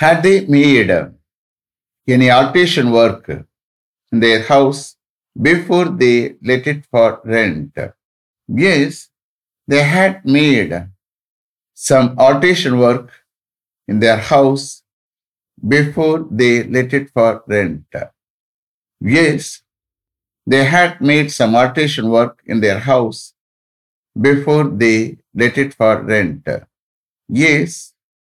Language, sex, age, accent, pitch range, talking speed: English, male, 60-79, Indian, 110-140 Hz, 100 wpm